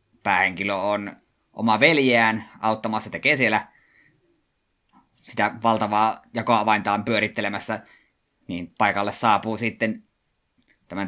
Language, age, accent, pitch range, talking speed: Finnish, 20-39, native, 105-130 Hz, 85 wpm